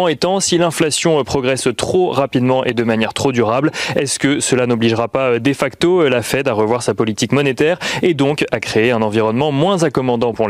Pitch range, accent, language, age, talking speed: 125-165 Hz, French, French, 30-49, 195 wpm